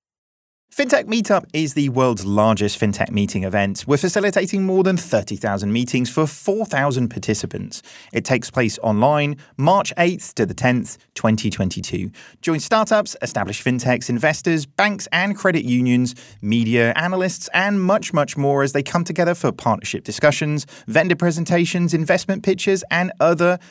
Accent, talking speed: British, 140 wpm